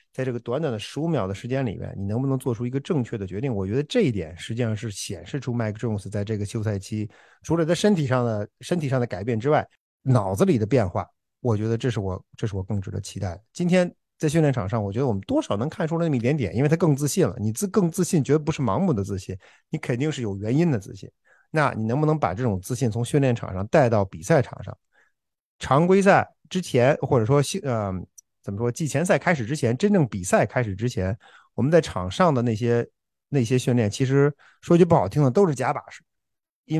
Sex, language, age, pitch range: male, Chinese, 50-69, 110-155 Hz